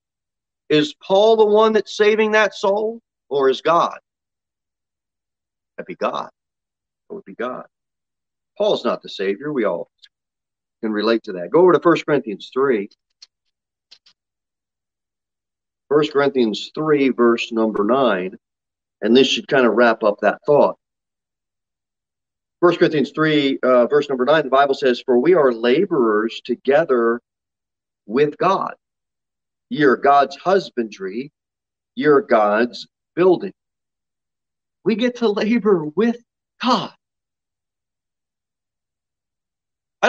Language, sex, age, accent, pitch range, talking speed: English, male, 40-59, American, 110-170 Hz, 120 wpm